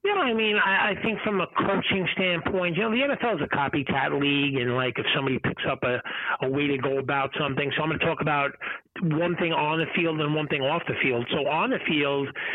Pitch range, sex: 160-200 Hz, male